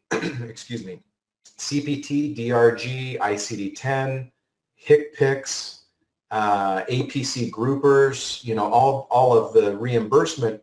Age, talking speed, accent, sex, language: 30-49, 85 wpm, American, male, English